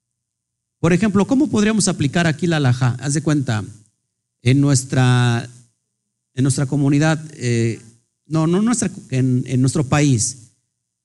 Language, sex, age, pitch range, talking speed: Spanish, male, 50-69, 115-170 Hz, 130 wpm